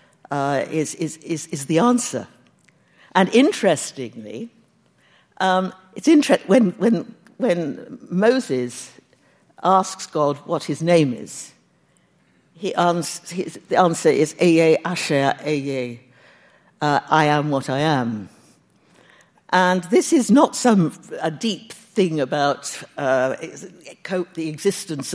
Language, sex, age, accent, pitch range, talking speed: English, female, 60-79, British, 155-210 Hz, 115 wpm